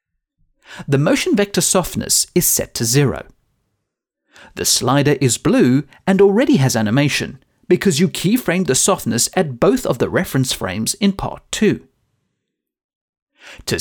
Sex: male